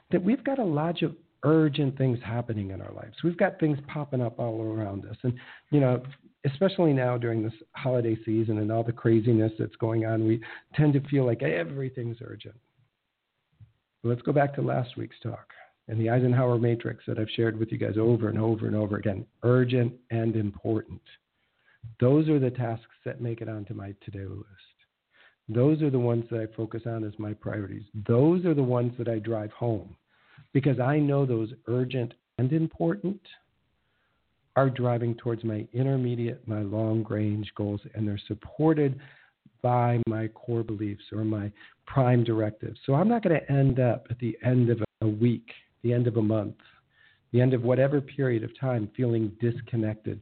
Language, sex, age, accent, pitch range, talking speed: English, male, 50-69, American, 110-130 Hz, 185 wpm